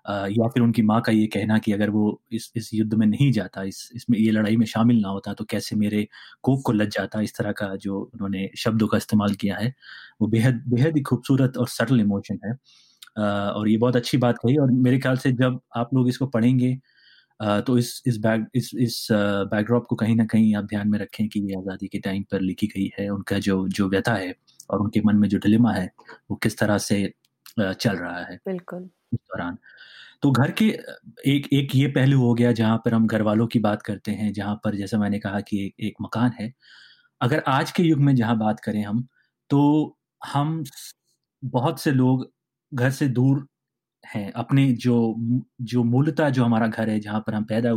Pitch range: 105-125 Hz